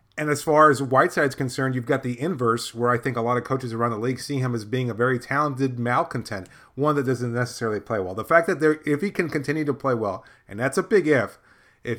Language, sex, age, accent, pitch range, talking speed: English, male, 30-49, American, 120-145 Hz, 255 wpm